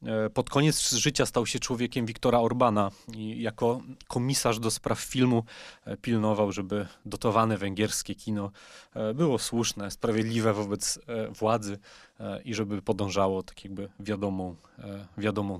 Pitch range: 105-130 Hz